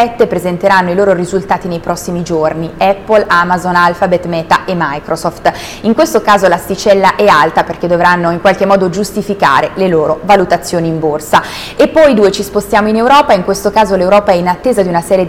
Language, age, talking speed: Italian, 20-39, 185 wpm